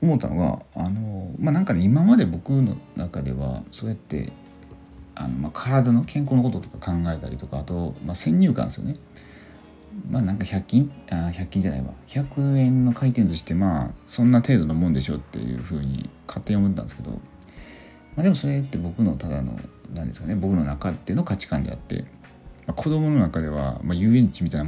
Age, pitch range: 40-59, 75-120 Hz